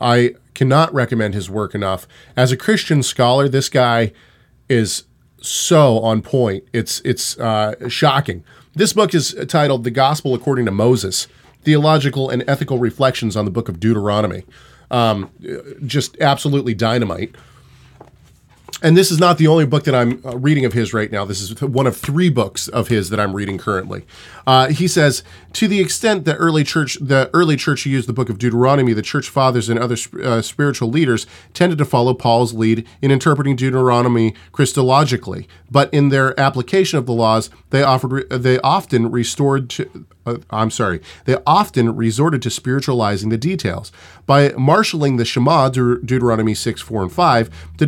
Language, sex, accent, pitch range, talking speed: English, male, American, 115-140 Hz, 170 wpm